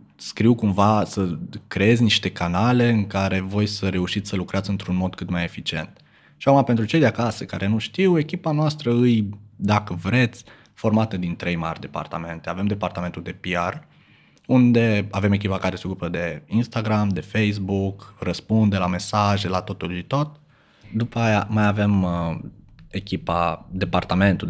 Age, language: 20-39, Romanian